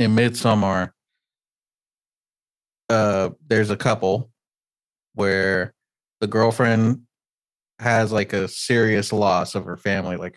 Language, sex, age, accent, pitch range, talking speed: English, male, 30-49, American, 100-120 Hz, 105 wpm